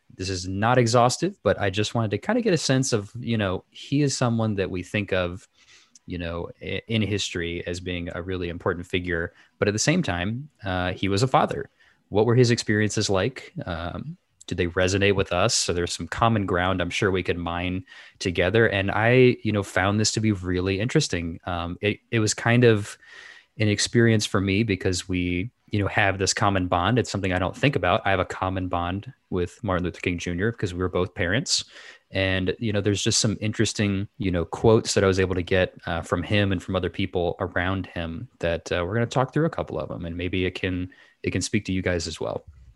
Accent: American